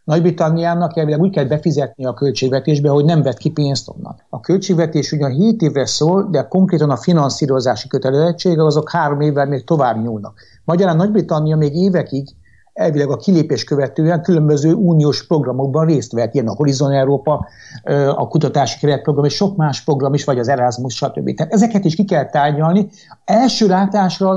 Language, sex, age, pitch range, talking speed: Hungarian, male, 60-79, 135-175 Hz, 165 wpm